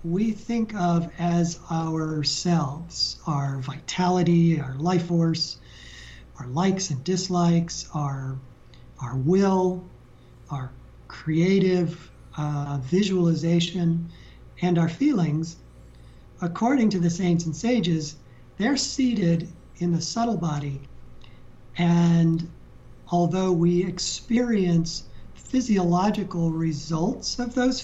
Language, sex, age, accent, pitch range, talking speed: English, male, 50-69, American, 140-180 Hz, 95 wpm